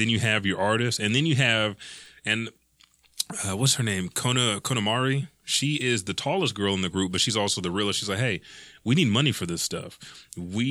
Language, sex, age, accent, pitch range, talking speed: English, male, 30-49, American, 95-120 Hz, 220 wpm